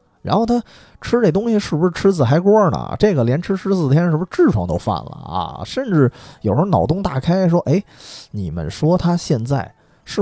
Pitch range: 105-160 Hz